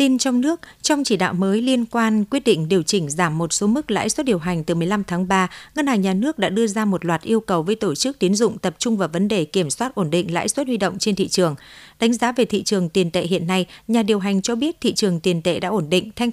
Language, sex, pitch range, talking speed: Vietnamese, female, 185-230 Hz, 290 wpm